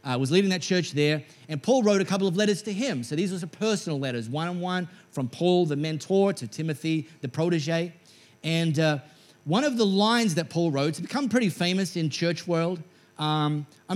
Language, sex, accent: English, male, Australian